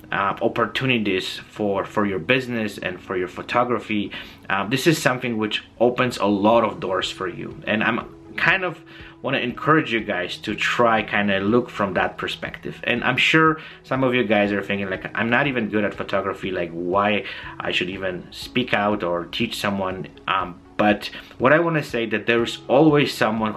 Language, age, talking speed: English, 30-49, 195 wpm